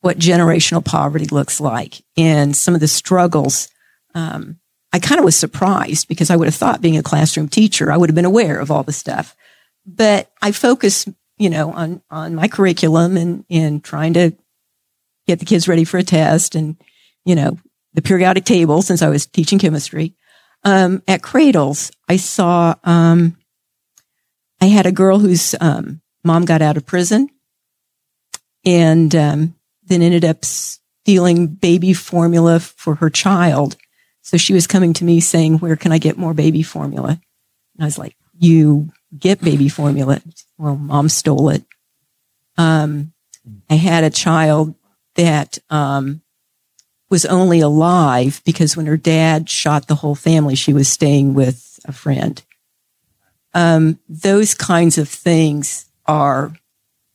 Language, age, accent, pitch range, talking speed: English, 50-69, American, 150-175 Hz, 155 wpm